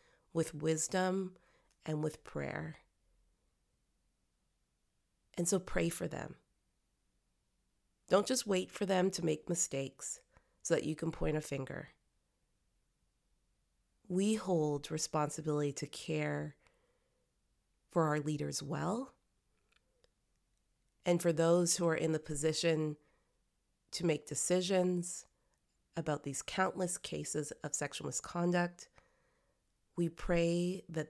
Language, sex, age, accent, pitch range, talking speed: English, female, 30-49, American, 145-175 Hz, 105 wpm